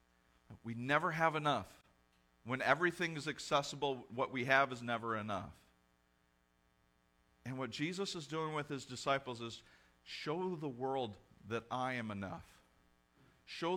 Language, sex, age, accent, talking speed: English, male, 40-59, American, 135 wpm